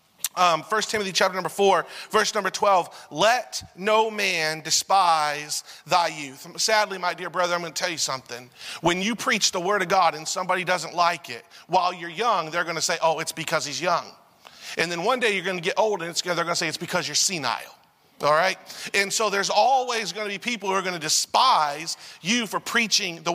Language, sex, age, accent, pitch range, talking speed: English, male, 40-59, American, 170-215 Hz, 225 wpm